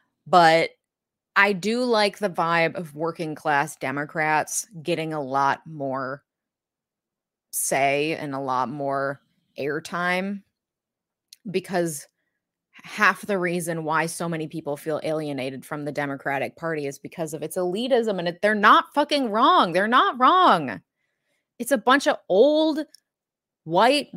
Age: 20-39